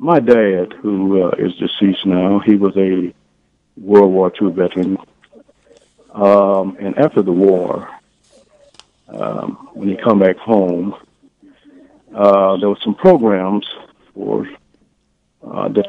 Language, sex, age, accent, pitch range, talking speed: English, male, 50-69, American, 95-125 Hz, 120 wpm